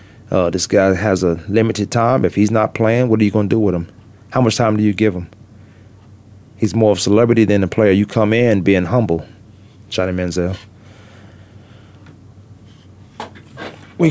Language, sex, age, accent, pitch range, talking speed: English, male, 30-49, American, 105-120 Hz, 180 wpm